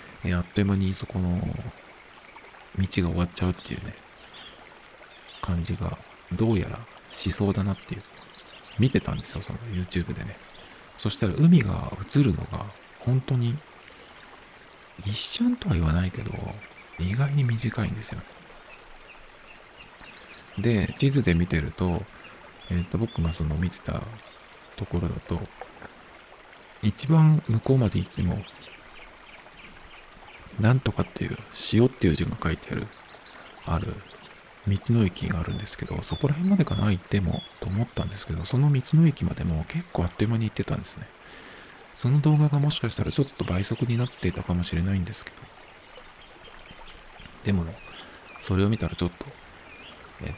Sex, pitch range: male, 90-115 Hz